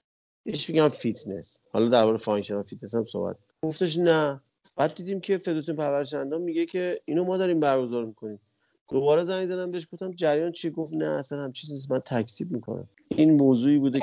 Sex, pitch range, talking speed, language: male, 110-155 Hz, 190 wpm, Persian